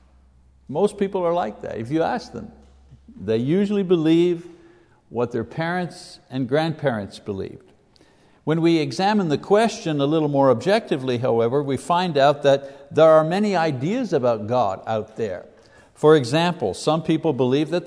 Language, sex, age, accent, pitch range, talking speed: English, male, 60-79, American, 120-170 Hz, 155 wpm